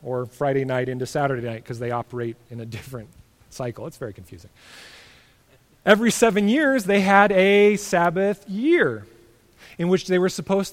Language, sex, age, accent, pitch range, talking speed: English, male, 30-49, American, 150-225 Hz, 160 wpm